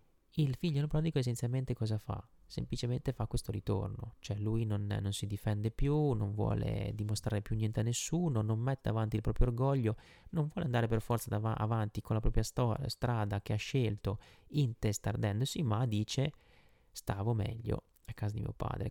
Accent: native